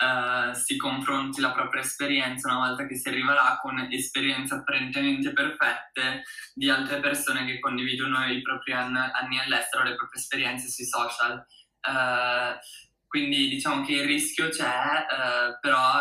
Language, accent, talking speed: Italian, native, 145 wpm